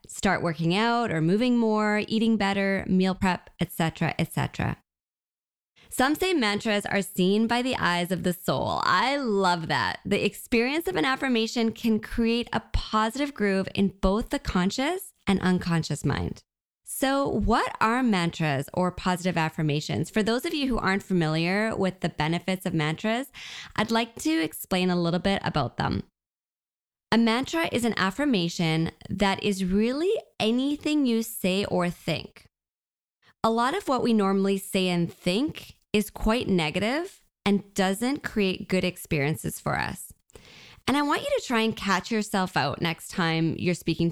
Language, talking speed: English, 160 wpm